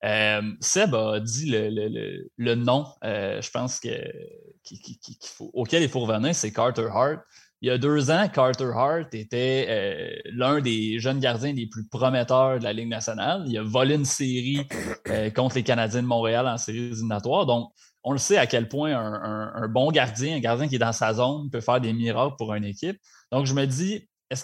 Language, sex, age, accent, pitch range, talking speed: French, male, 20-39, Canadian, 120-150 Hz, 215 wpm